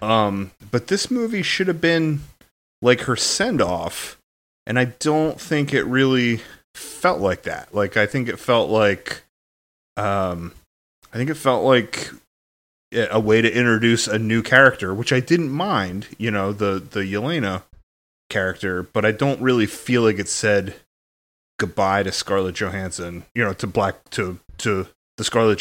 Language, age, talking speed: English, 30-49, 160 wpm